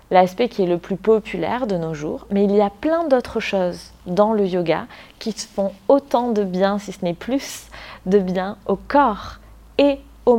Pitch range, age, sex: 180-220 Hz, 20-39, female